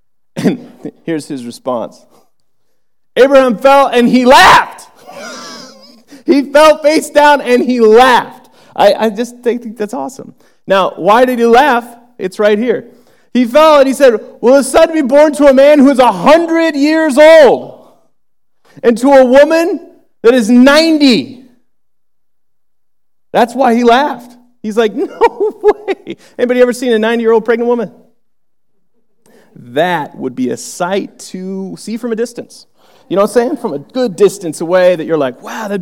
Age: 30-49